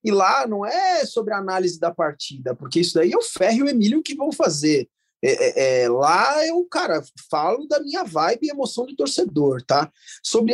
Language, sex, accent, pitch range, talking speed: Portuguese, male, Brazilian, 190-315 Hz, 205 wpm